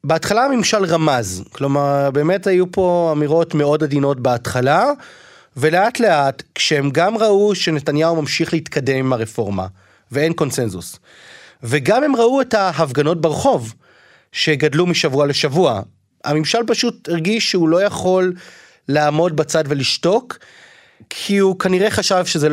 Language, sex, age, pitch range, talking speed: Hebrew, male, 30-49, 145-190 Hz, 125 wpm